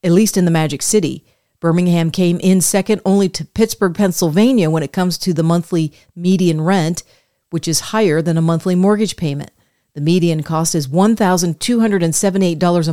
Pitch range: 165-195 Hz